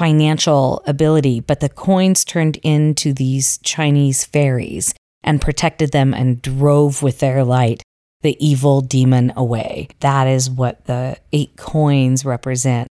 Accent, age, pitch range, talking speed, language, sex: American, 40-59, 135-165 Hz, 135 wpm, English, female